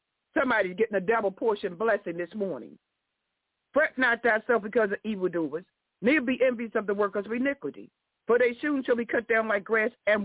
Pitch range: 210-260 Hz